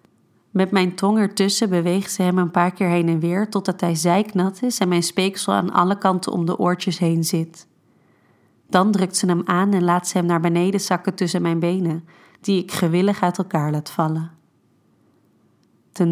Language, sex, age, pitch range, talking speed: Dutch, female, 30-49, 175-195 Hz, 190 wpm